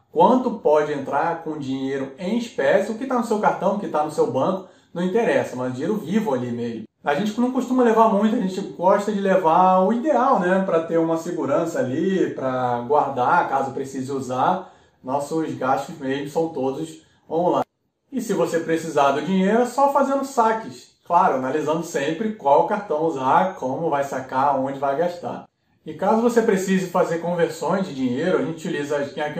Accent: Brazilian